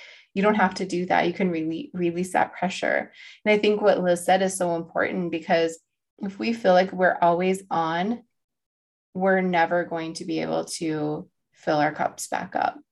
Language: English